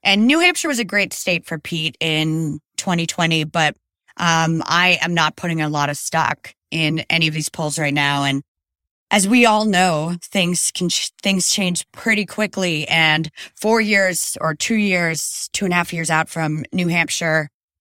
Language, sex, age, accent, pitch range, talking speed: English, female, 20-39, American, 150-190 Hz, 180 wpm